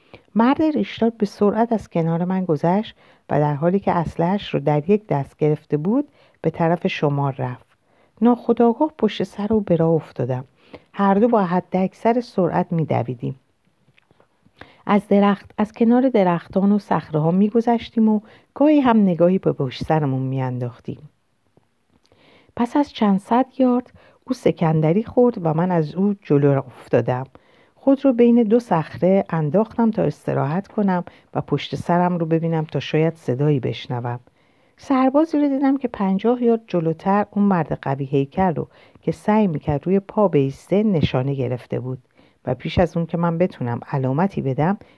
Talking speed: 155 wpm